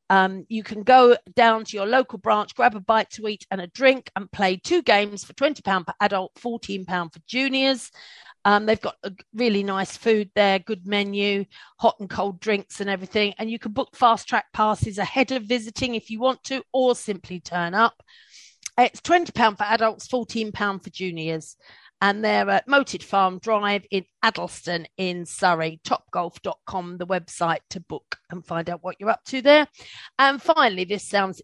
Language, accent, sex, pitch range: English, British, female, 190-235 Hz